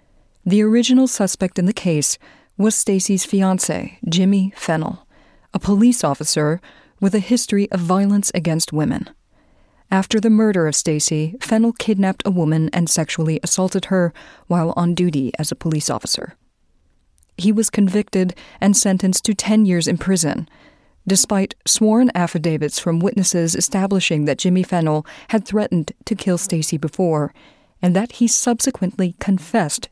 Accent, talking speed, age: American, 140 wpm, 40-59